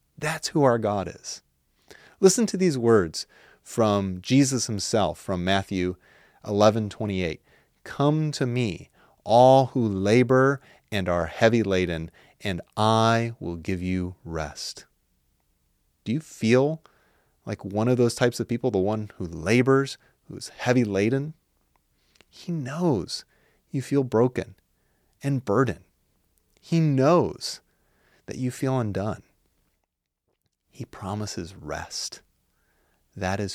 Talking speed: 125 wpm